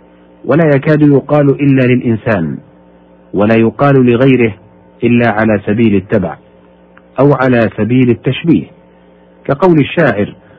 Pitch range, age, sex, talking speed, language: 95-140 Hz, 50-69, male, 100 wpm, Arabic